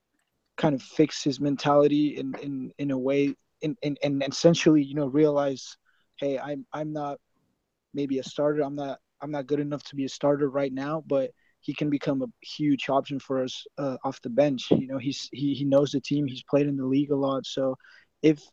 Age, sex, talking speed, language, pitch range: 20-39, male, 220 wpm, English, 135-150 Hz